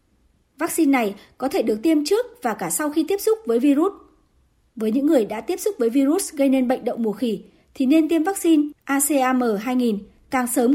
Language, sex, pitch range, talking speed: Vietnamese, male, 235-315 Hz, 200 wpm